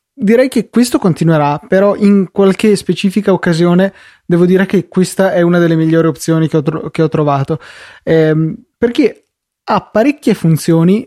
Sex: male